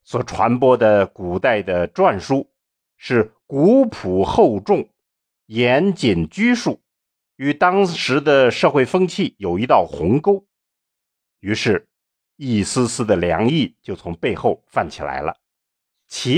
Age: 50-69